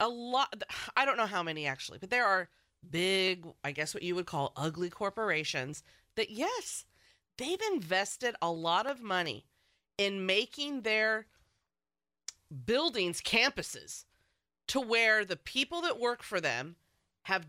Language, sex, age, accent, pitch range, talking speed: English, female, 30-49, American, 185-270 Hz, 145 wpm